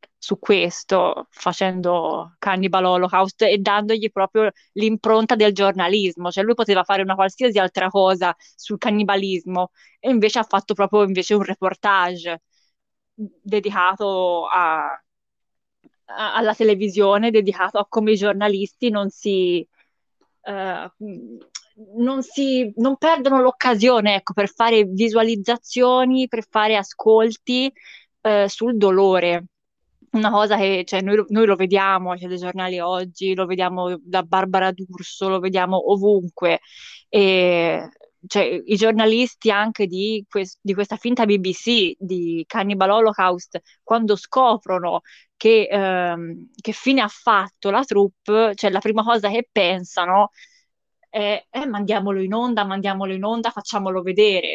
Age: 20-39